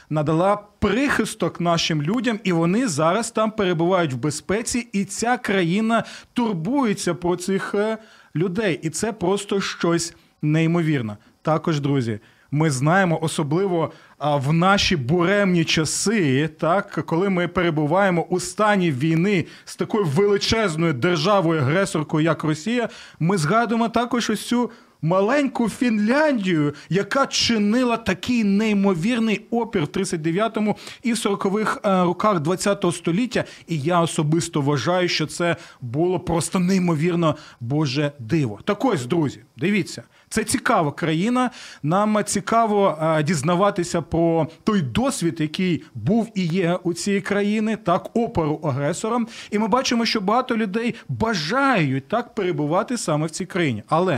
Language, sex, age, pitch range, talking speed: Ukrainian, male, 30-49, 160-220 Hz, 125 wpm